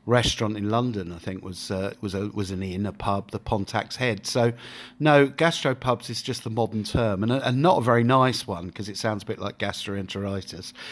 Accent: British